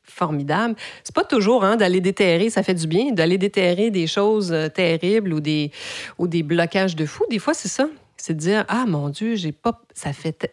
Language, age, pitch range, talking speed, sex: French, 40-59, 160-210 Hz, 210 wpm, female